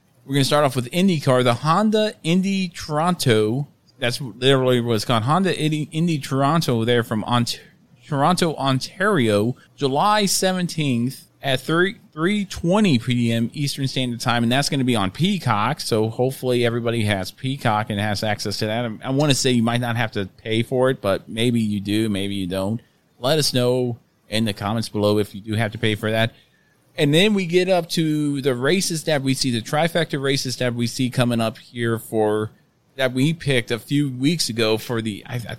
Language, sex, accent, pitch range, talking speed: English, male, American, 115-150 Hz, 195 wpm